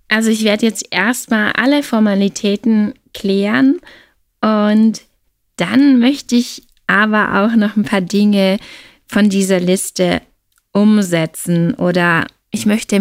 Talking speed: 115 wpm